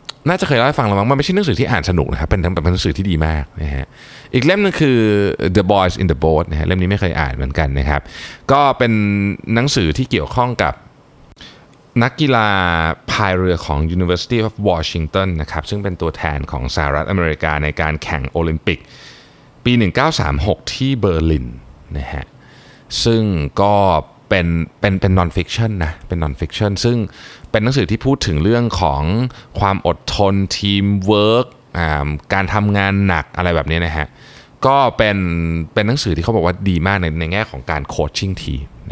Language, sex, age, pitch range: Thai, male, 20-39, 80-110 Hz